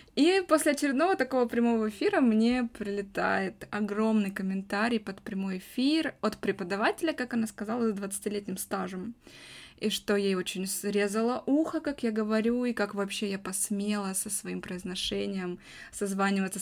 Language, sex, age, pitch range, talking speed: Russian, female, 20-39, 200-240 Hz, 140 wpm